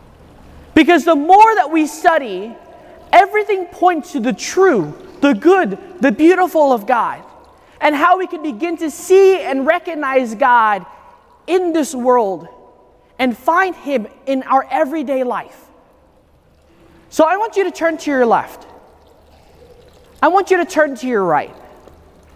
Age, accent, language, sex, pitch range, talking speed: 30-49, American, English, male, 255-345 Hz, 145 wpm